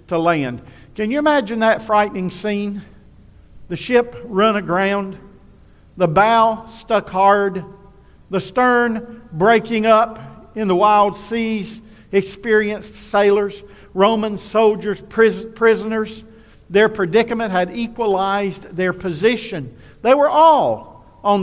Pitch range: 170-215 Hz